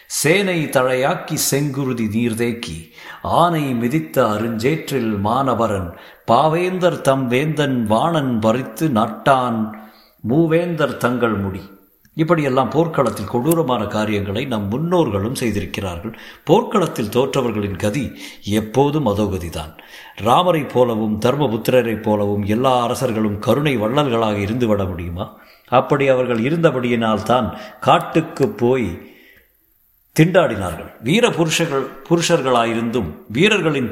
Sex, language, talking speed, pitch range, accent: male, Tamil, 85 wpm, 105-145 Hz, native